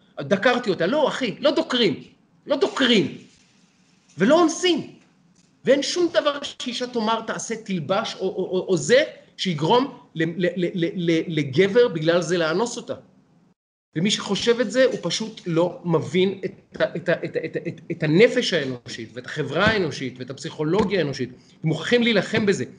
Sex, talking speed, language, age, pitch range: male, 155 wpm, Hebrew, 30-49, 175-235 Hz